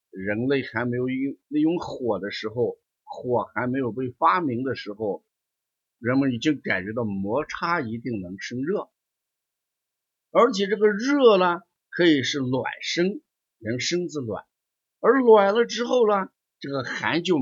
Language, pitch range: Chinese, 105-175 Hz